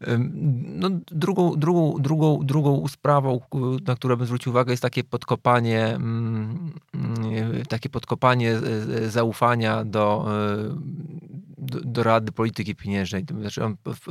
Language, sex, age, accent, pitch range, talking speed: Polish, male, 20-39, native, 100-125 Hz, 110 wpm